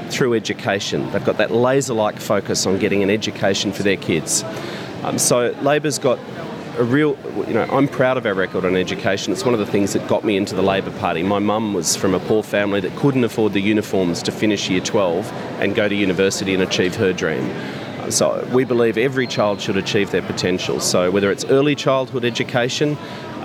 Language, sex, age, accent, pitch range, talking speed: English, male, 30-49, Australian, 105-130 Hz, 210 wpm